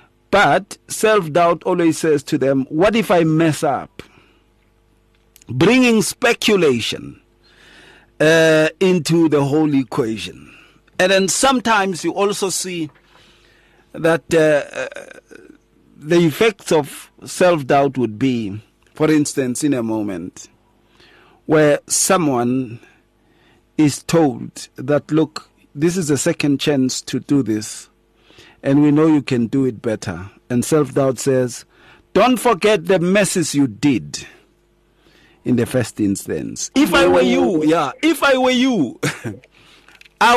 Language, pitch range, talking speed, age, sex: English, 125-185 Hz, 125 wpm, 50-69, male